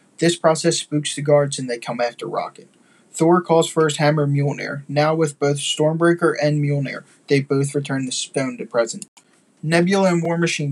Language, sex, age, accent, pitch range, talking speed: English, male, 20-39, American, 135-160 Hz, 185 wpm